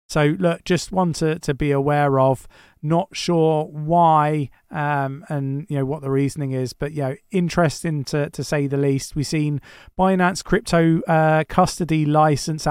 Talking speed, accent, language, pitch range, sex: 170 wpm, British, English, 135-160 Hz, male